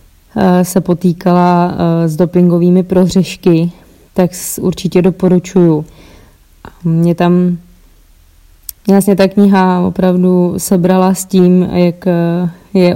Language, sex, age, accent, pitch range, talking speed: Czech, female, 20-39, native, 175-185 Hz, 90 wpm